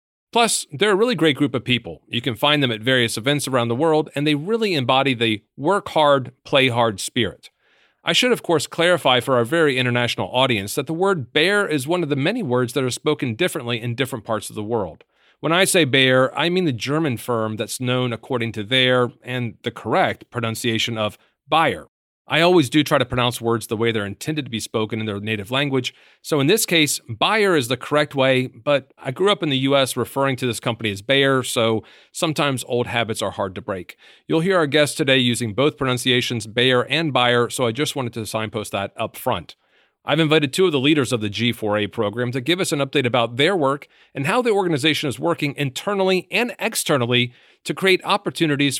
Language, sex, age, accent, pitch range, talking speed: English, male, 40-59, American, 120-155 Hz, 215 wpm